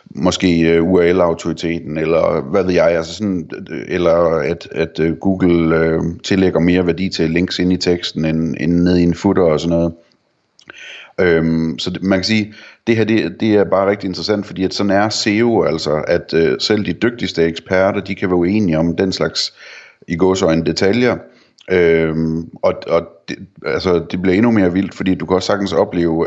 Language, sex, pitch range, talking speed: Danish, male, 85-100 Hz, 185 wpm